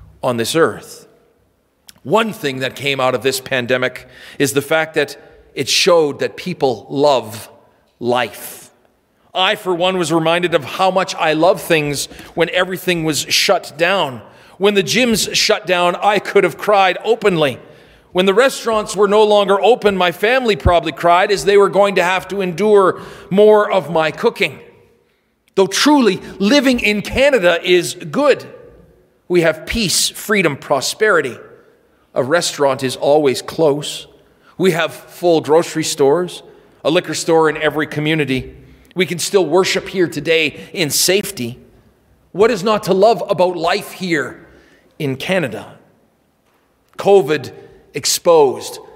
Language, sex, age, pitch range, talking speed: English, male, 40-59, 155-205 Hz, 145 wpm